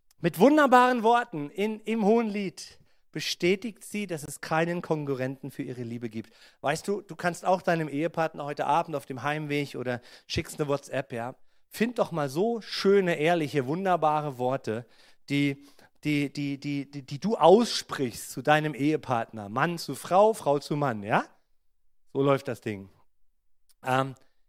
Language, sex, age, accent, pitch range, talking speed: German, male, 40-59, German, 115-155 Hz, 160 wpm